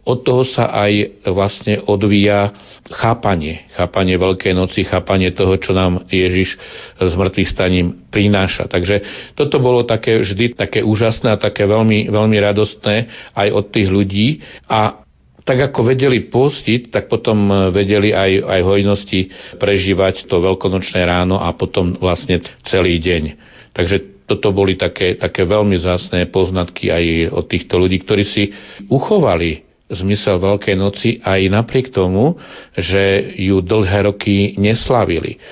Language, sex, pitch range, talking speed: Slovak, male, 95-105 Hz, 135 wpm